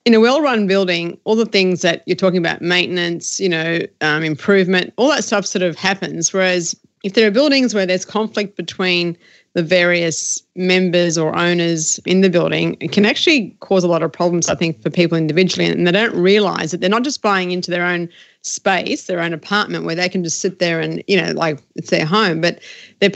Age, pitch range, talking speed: 30-49, 165-190 Hz, 215 wpm